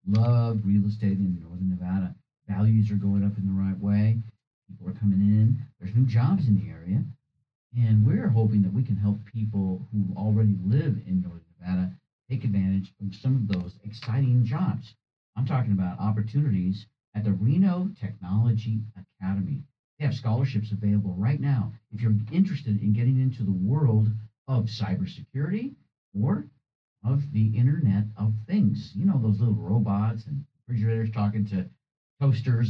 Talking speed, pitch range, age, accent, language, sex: 160 wpm, 100-130 Hz, 50-69, American, English, male